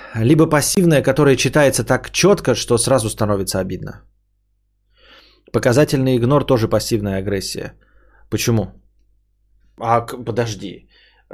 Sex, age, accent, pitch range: male, 20-39, native, 100-130 Hz